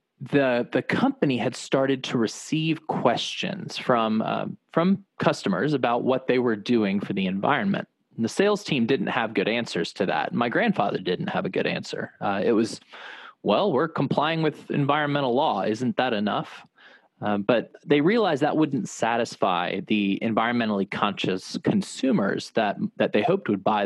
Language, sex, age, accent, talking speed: English, male, 20-39, American, 165 wpm